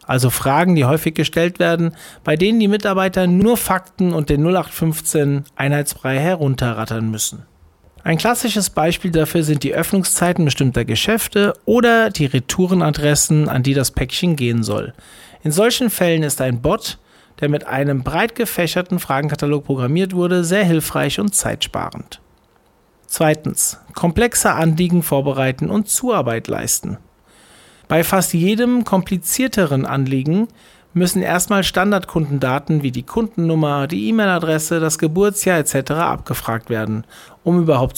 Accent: German